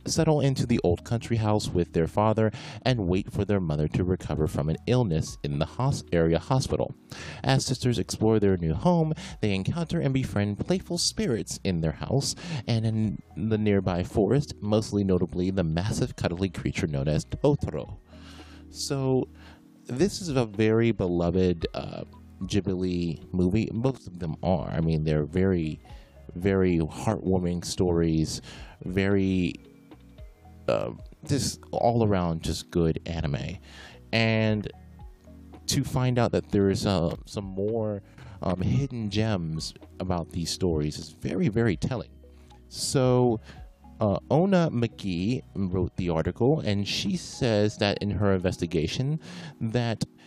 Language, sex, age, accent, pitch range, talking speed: English, male, 30-49, American, 85-120 Hz, 135 wpm